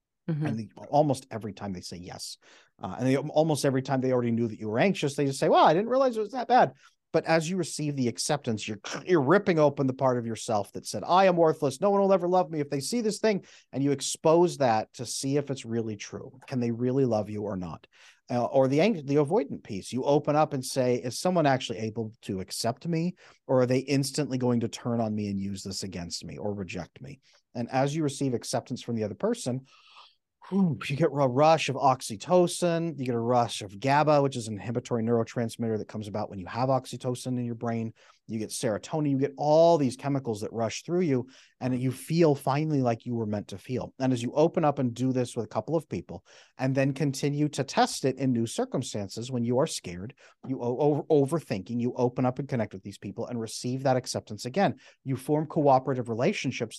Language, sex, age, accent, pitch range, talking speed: English, male, 40-59, American, 115-150 Hz, 230 wpm